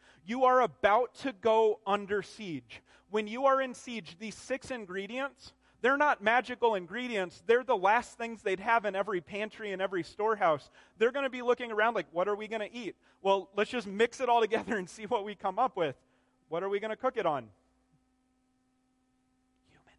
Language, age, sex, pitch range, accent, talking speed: English, 30-49, male, 200-255 Hz, American, 200 wpm